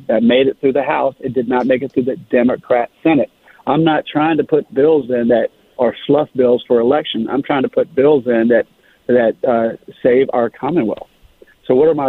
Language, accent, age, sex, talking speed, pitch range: English, American, 50-69, male, 220 wpm, 120-145 Hz